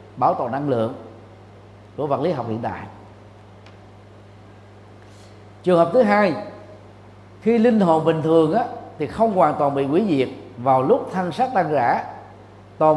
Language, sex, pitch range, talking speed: Vietnamese, male, 105-155 Hz, 155 wpm